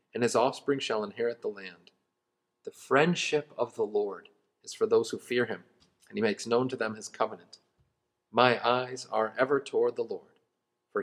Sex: male